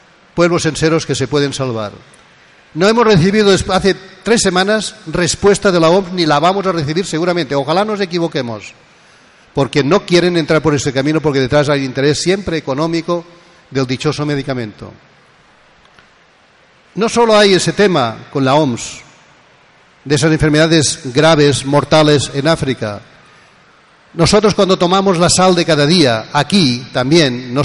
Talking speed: 145 wpm